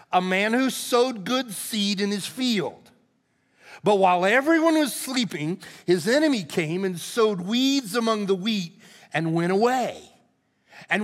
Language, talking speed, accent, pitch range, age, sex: English, 145 wpm, American, 175-240 Hz, 50-69, male